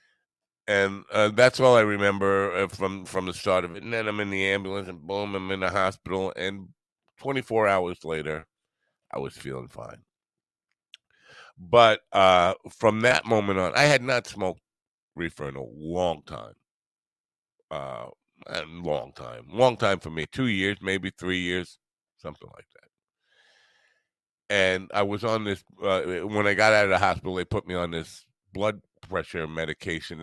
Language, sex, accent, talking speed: English, male, American, 170 wpm